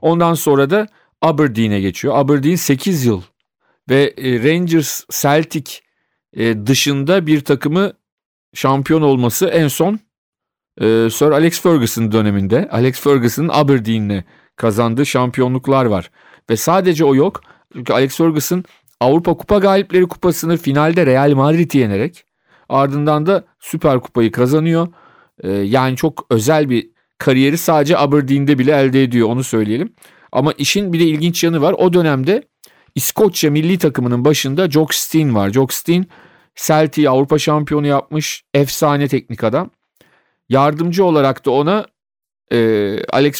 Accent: native